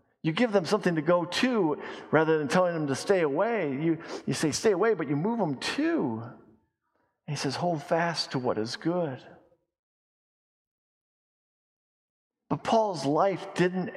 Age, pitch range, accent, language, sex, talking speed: 50-69, 145-200 Hz, American, English, male, 155 wpm